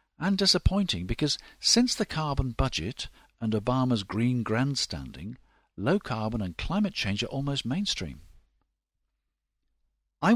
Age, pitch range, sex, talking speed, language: 50-69, 100-150 Hz, male, 115 wpm, English